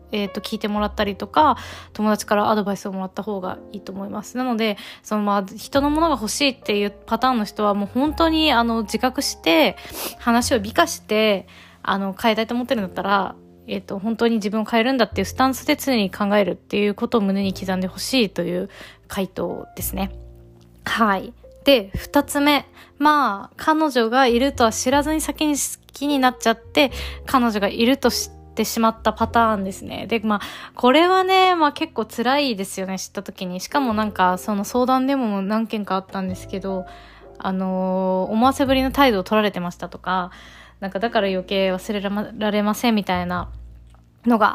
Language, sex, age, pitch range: Japanese, female, 20-39, 195-260 Hz